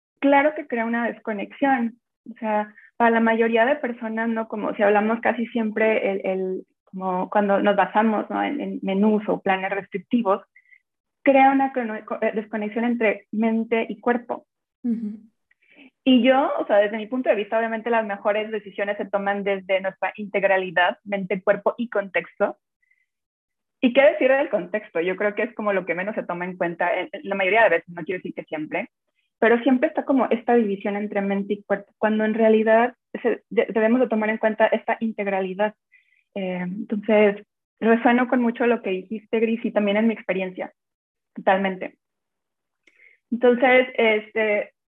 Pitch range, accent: 200-240 Hz, Mexican